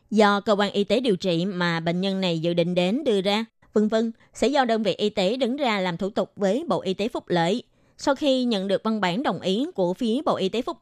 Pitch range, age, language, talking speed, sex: 190-245 Hz, 20-39, Vietnamese, 270 wpm, female